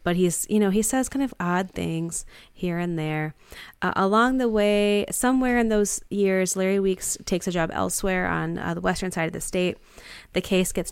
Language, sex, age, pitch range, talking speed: English, female, 20-39, 155-185 Hz, 210 wpm